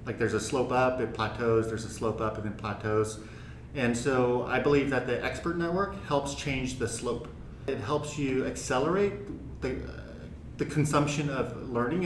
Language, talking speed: English, 180 wpm